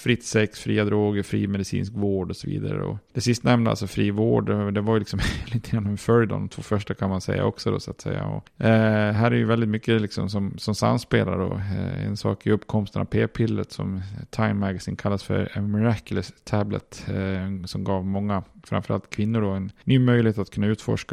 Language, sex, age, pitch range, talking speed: Swedish, male, 20-39, 95-110 Hz, 205 wpm